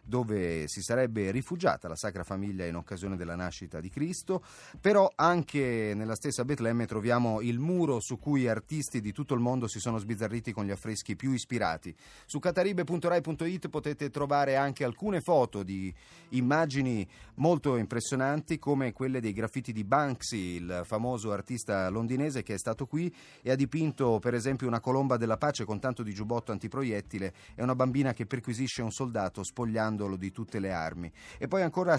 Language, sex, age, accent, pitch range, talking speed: Italian, male, 30-49, native, 110-150 Hz, 170 wpm